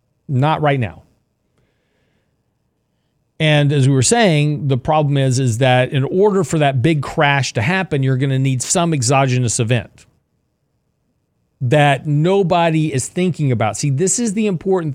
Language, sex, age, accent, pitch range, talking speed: English, male, 40-59, American, 125-160 Hz, 155 wpm